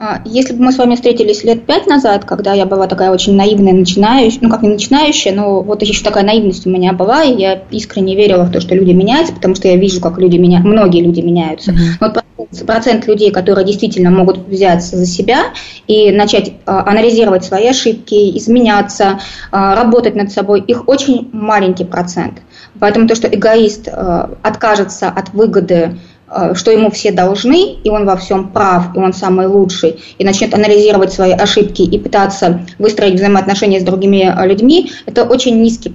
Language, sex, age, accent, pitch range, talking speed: Russian, female, 20-39, native, 190-225 Hz, 175 wpm